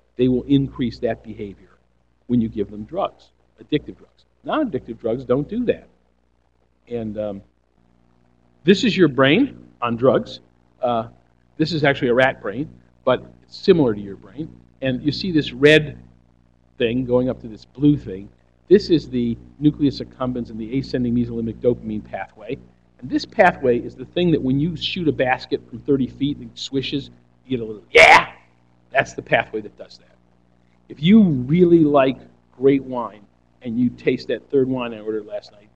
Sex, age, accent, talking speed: male, 50-69, American, 180 wpm